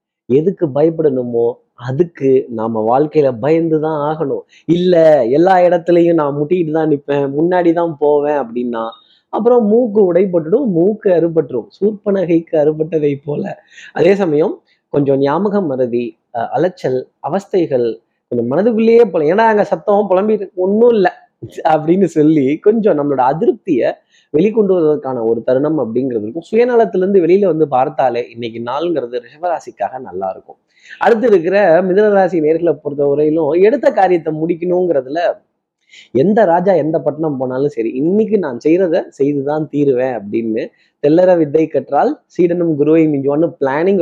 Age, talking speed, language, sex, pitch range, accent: 20-39, 125 wpm, Tamil, male, 145-190 Hz, native